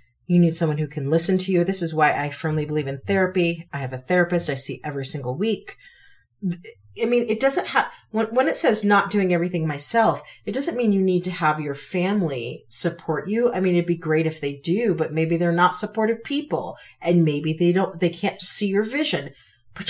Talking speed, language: 215 wpm, English